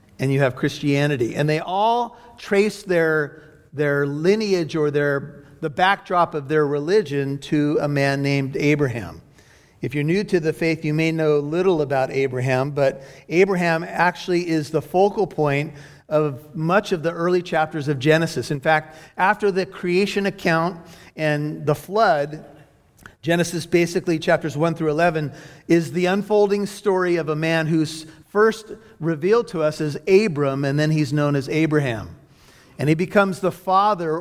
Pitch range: 145-175 Hz